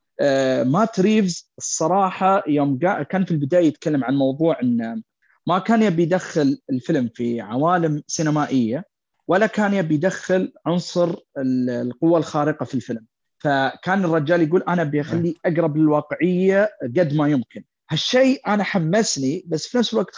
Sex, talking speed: male, 135 wpm